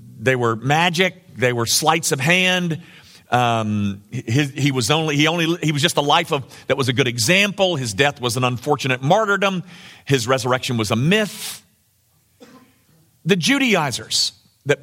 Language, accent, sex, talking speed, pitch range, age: English, American, male, 160 wpm, 115-185 Hz, 50-69